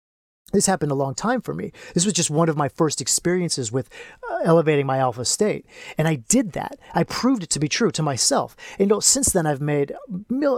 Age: 30-49